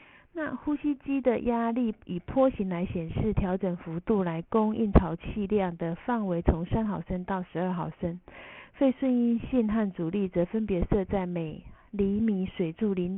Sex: female